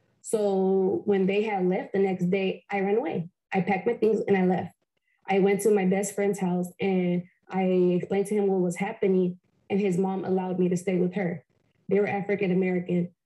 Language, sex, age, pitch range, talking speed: English, female, 20-39, 185-205 Hz, 205 wpm